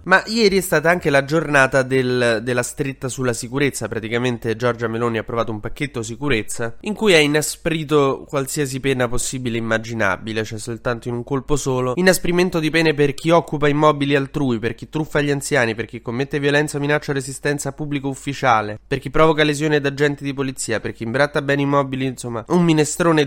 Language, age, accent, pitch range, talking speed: Italian, 20-39, native, 115-145 Hz, 190 wpm